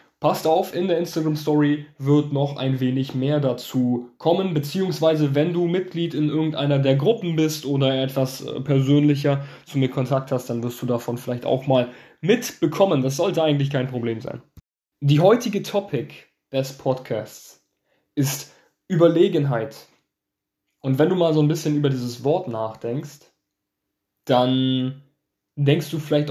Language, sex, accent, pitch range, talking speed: German, male, German, 130-155 Hz, 145 wpm